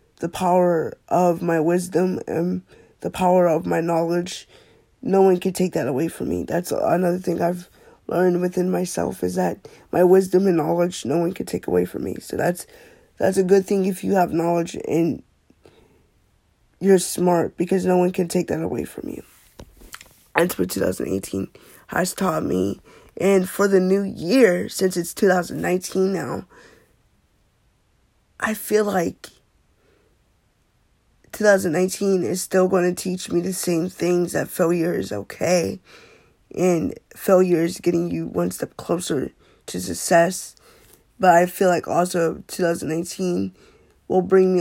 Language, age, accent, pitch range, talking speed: English, 20-39, American, 165-185 Hz, 150 wpm